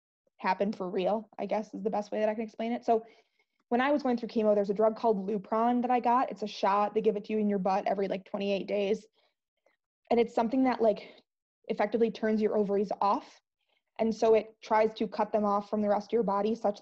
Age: 20-39